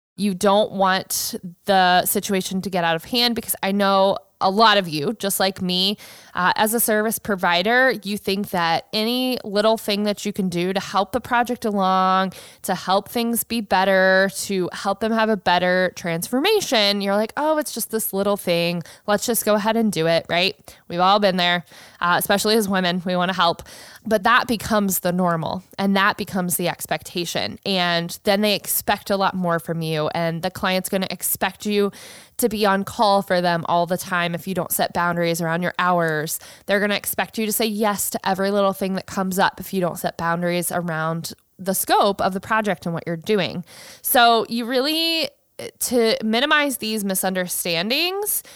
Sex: female